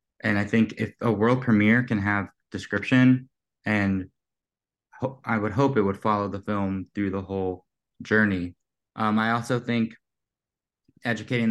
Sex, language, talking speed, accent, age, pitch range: male, English, 145 wpm, American, 20-39, 100-110 Hz